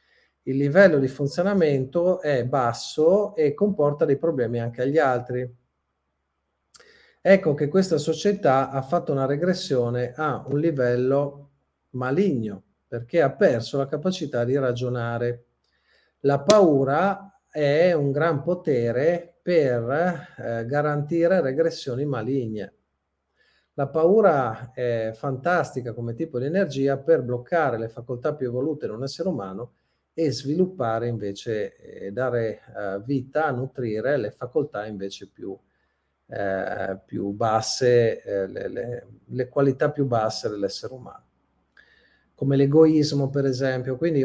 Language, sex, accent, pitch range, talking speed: Italian, male, native, 115-155 Hz, 120 wpm